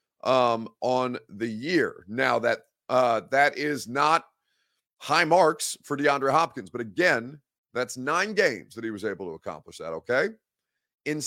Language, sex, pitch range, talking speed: English, male, 110-135 Hz, 155 wpm